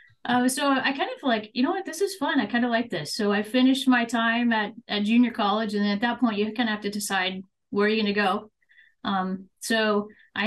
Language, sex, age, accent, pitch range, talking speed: English, female, 30-49, American, 205-250 Hz, 260 wpm